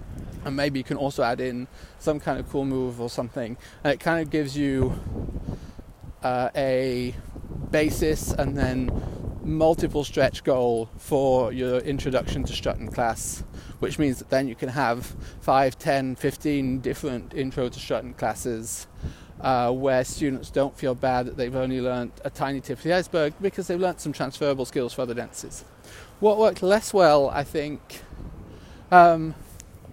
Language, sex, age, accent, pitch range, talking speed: English, male, 30-49, British, 125-155 Hz, 160 wpm